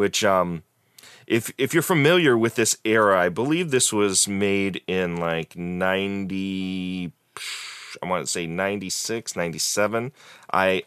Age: 30-49